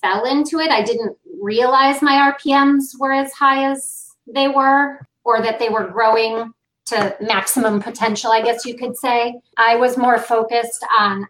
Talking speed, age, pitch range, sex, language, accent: 170 wpm, 30-49, 200-250 Hz, female, English, American